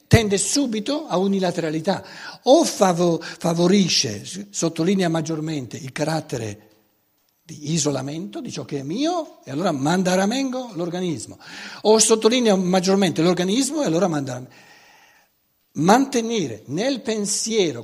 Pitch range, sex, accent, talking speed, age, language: 160-220 Hz, male, native, 120 wpm, 60-79, Italian